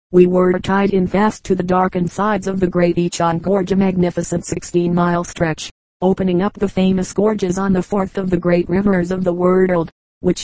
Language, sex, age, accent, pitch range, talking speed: English, female, 40-59, American, 175-195 Hz, 195 wpm